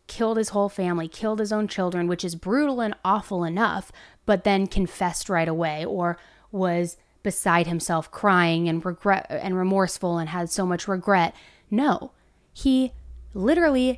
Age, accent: 20-39, American